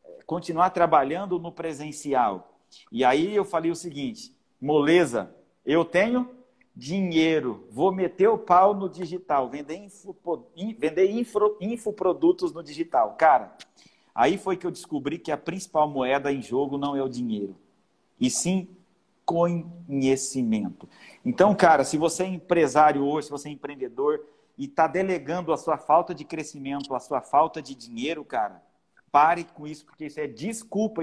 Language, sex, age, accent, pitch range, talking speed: Portuguese, male, 50-69, Brazilian, 155-205 Hz, 145 wpm